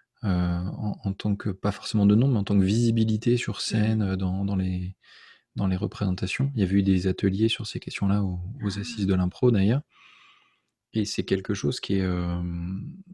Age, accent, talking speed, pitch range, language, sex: 20-39, French, 200 wpm, 95-110 Hz, French, male